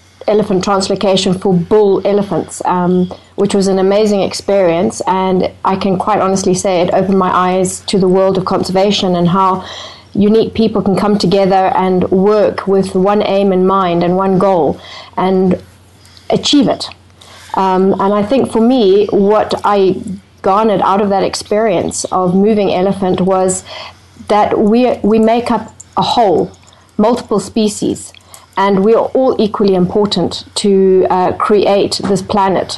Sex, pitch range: female, 185-205 Hz